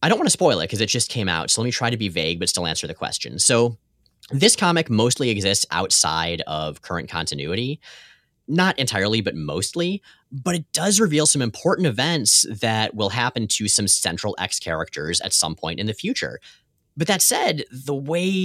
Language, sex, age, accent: English, male, 30-49, American